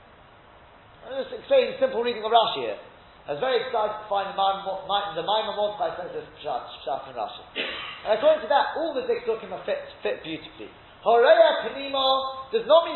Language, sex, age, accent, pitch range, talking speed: English, male, 40-59, British, 210-300 Hz, 175 wpm